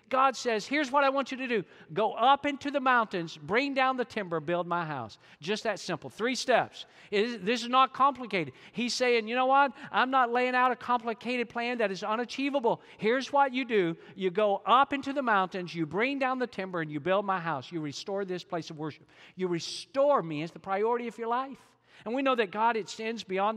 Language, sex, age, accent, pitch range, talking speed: English, male, 50-69, American, 190-245 Hz, 220 wpm